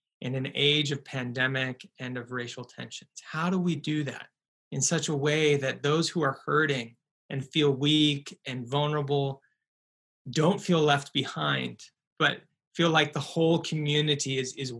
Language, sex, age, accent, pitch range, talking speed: English, male, 20-39, American, 135-160 Hz, 160 wpm